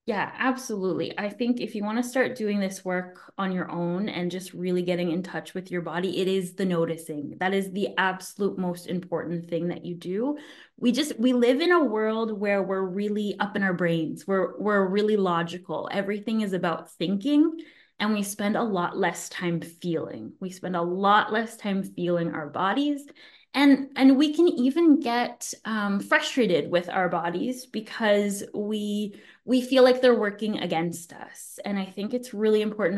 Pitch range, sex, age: 175-230 Hz, female, 20-39